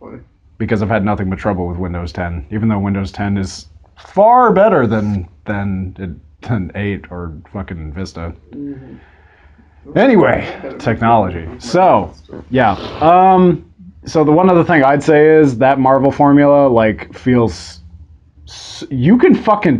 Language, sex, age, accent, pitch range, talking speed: English, male, 30-49, American, 95-155 Hz, 135 wpm